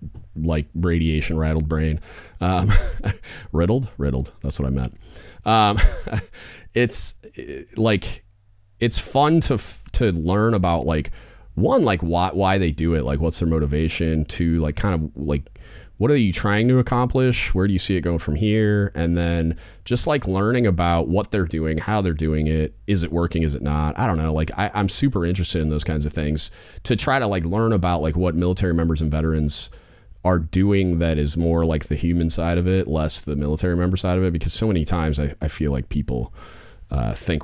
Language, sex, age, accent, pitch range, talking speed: English, male, 30-49, American, 80-105 Hz, 200 wpm